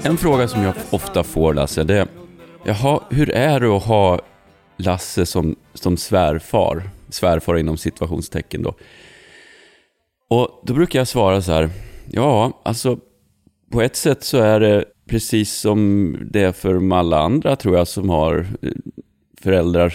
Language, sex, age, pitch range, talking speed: English, male, 30-49, 85-110 Hz, 150 wpm